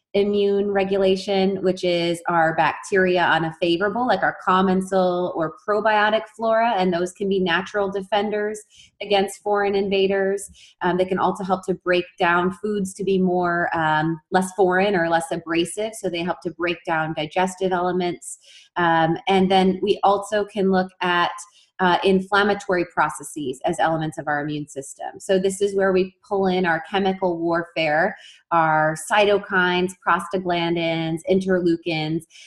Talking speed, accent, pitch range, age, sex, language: 150 wpm, American, 175-195 Hz, 30-49, female, English